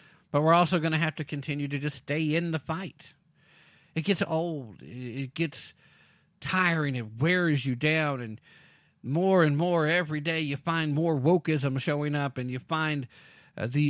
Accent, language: American, English